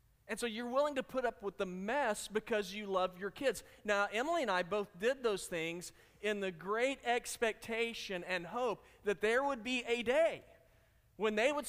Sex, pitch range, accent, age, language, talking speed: male, 165-230 Hz, American, 40-59, English, 195 wpm